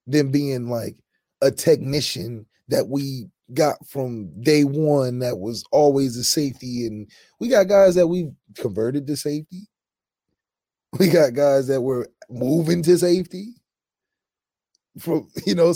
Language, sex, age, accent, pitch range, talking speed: English, male, 20-39, American, 125-160 Hz, 135 wpm